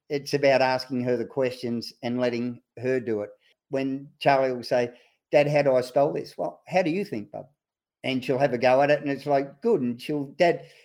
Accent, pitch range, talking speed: Australian, 125-170 Hz, 225 wpm